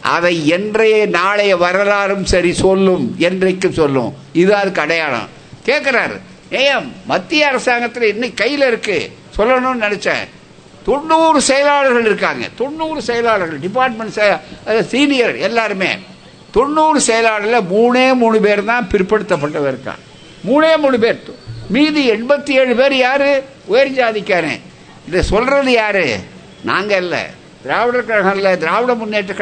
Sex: male